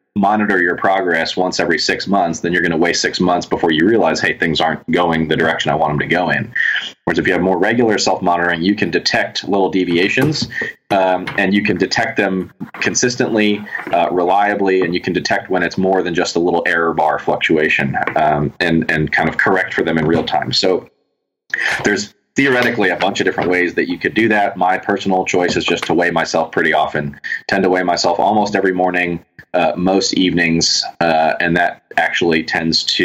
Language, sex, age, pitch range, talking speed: English, male, 30-49, 85-95 Hz, 210 wpm